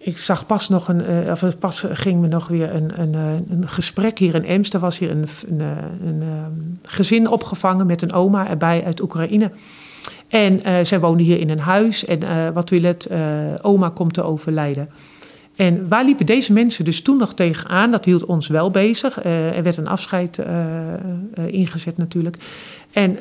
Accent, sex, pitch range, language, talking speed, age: Dutch, male, 165-200 Hz, Dutch, 195 wpm, 50-69